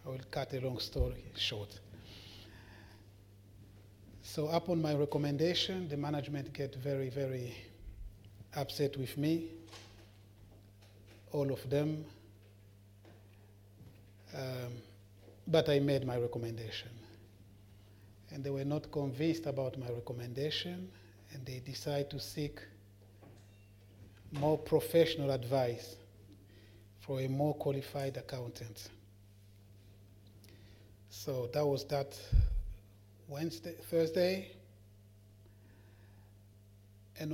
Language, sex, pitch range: English, male, 100-140 Hz